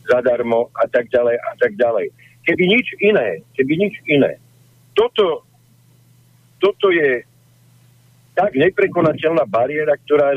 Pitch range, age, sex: 125-160 Hz, 60-79, male